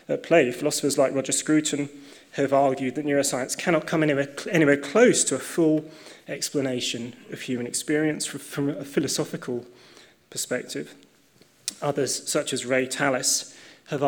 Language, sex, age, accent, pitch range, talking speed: English, male, 20-39, British, 130-160 Hz, 130 wpm